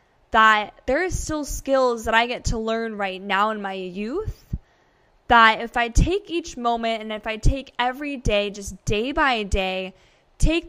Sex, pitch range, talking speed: female, 210-260 Hz, 180 wpm